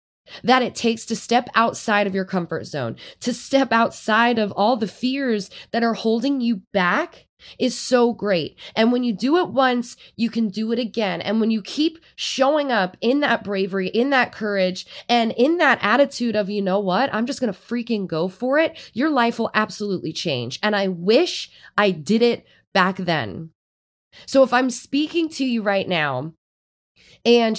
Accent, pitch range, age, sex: American, 190-250 Hz, 20-39, female